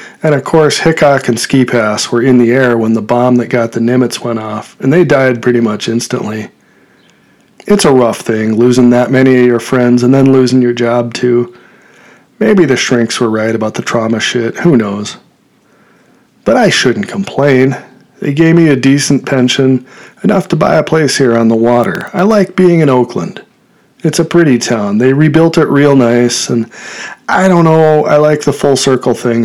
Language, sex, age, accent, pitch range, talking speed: English, male, 40-59, American, 120-150 Hz, 195 wpm